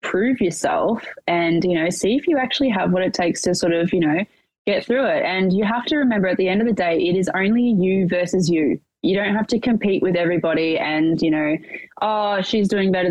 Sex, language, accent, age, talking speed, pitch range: female, English, Australian, 20-39, 240 wpm, 160-185 Hz